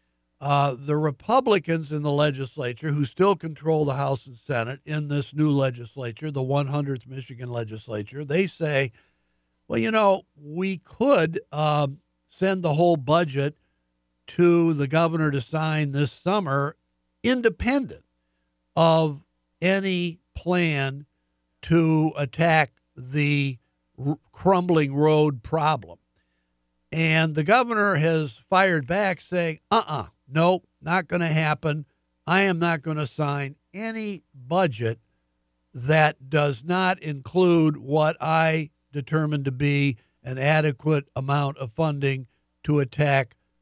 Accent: American